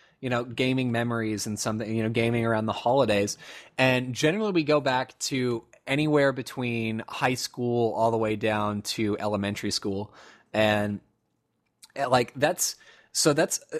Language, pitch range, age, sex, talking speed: English, 110-140 Hz, 20-39, male, 150 wpm